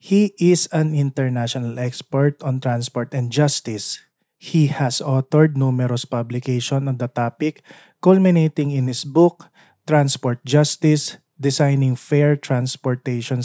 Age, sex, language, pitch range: 20-39, male, Filipino, 120-155 Hz